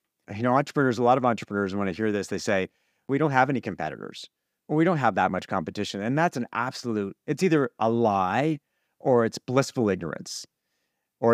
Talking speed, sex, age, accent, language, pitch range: 195 wpm, male, 40-59, American, English, 100-130 Hz